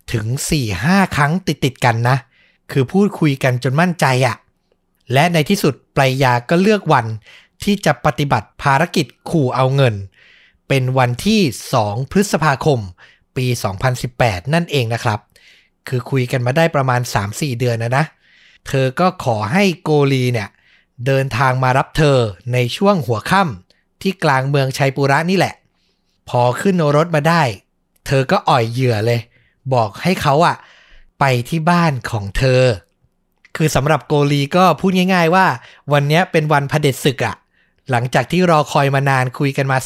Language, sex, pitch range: Thai, male, 120-155 Hz